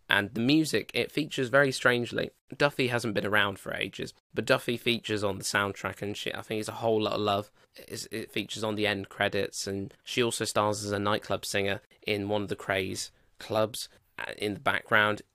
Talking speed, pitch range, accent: 205 wpm, 100-115 Hz, British